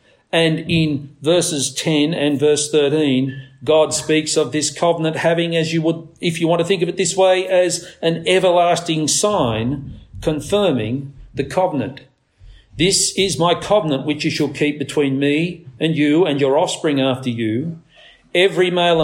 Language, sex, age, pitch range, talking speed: English, male, 50-69, 145-185 Hz, 160 wpm